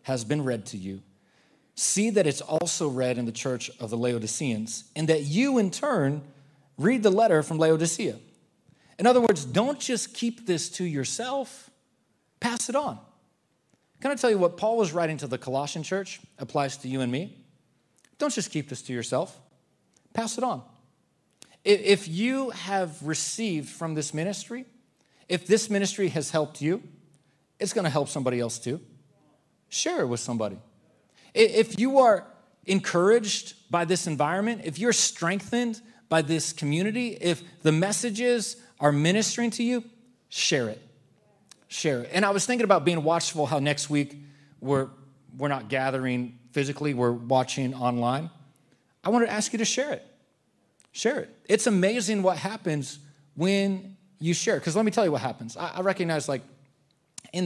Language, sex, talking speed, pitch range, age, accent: English, male, 165 wpm, 140-210 Hz, 40-59, American